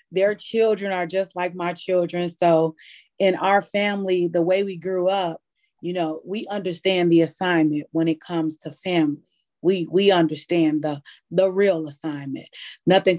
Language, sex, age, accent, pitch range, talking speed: English, female, 30-49, American, 165-200 Hz, 160 wpm